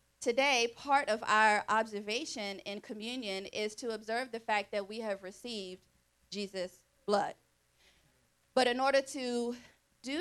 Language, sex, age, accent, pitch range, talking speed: English, female, 30-49, American, 200-245 Hz, 135 wpm